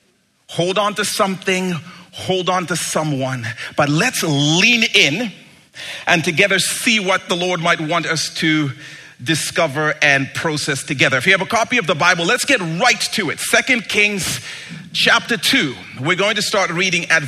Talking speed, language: 170 wpm, English